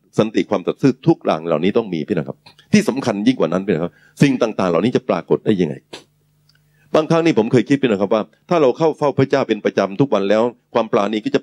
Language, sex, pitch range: Thai, male, 130-155 Hz